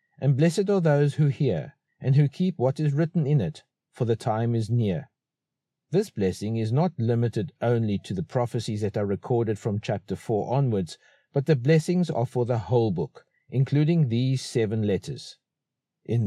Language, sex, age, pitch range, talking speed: English, male, 50-69, 115-155 Hz, 175 wpm